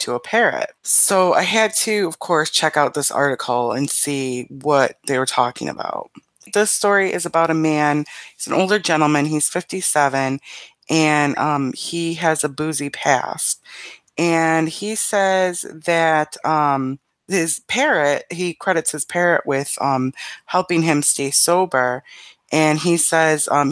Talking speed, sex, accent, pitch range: 150 wpm, female, American, 140-170 Hz